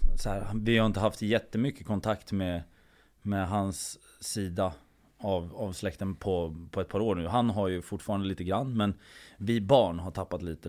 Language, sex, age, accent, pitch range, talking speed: Swedish, male, 20-39, native, 90-105 Hz, 185 wpm